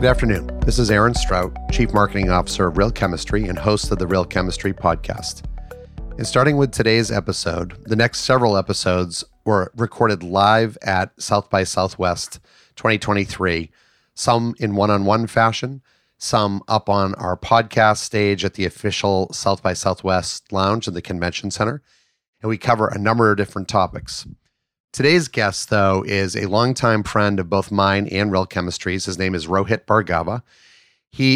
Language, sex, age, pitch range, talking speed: English, male, 30-49, 95-115 Hz, 160 wpm